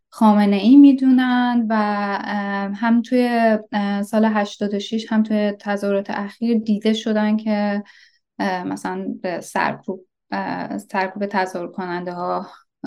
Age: 10-29